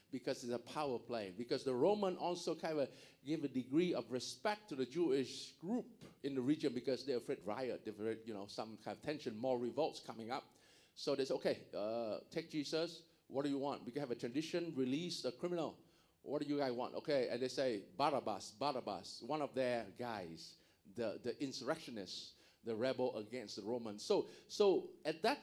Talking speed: 205 wpm